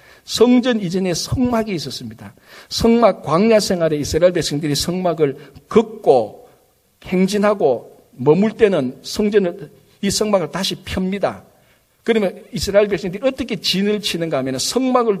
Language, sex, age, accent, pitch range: Korean, male, 60-79, native, 150-225 Hz